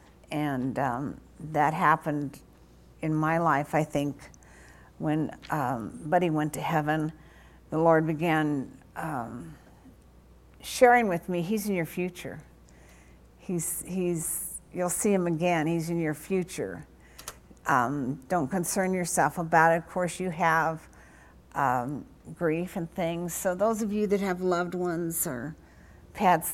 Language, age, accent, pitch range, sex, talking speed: English, 50-69, American, 145-180 Hz, female, 135 wpm